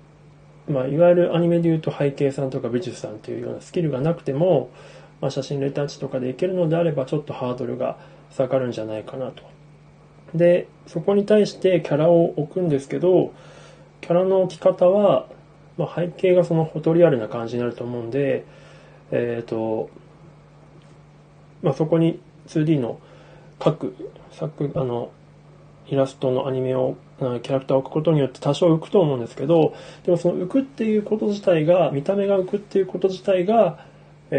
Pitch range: 135-170 Hz